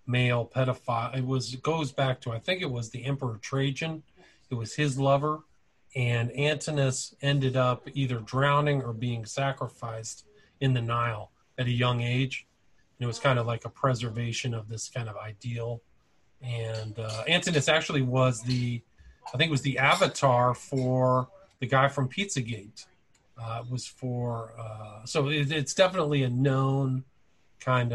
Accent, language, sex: American, English, male